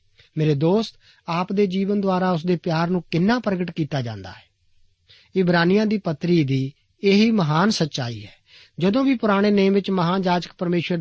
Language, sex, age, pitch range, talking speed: Punjabi, male, 50-69, 130-200 Hz, 165 wpm